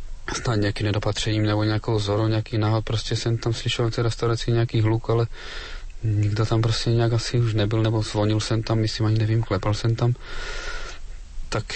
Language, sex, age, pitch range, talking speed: Slovak, male, 30-49, 110-120 Hz, 185 wpm